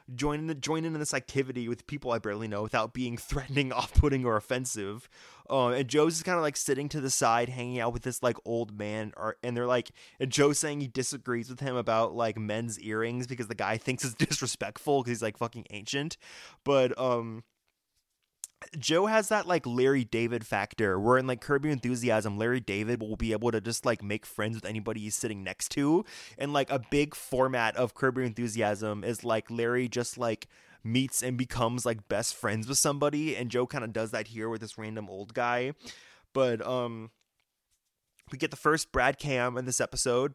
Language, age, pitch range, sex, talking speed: English, 20-39, 115-140 Hz, male, 200 wpm